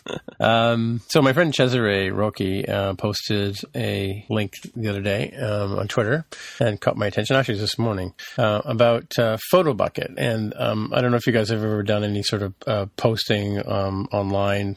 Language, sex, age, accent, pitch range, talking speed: English, male, 40-59, American, 100-115 Hz, 185 wpm